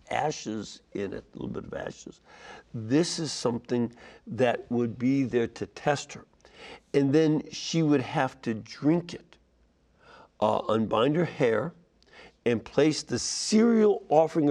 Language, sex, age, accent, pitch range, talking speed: English, male, 60-79, American, 115-145 Hz, 145 wpm